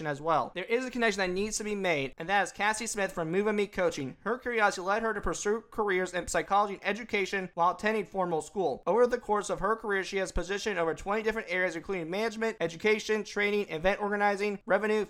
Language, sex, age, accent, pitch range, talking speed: English, male, 30-49, American, 175-210 Hz, 220 wpm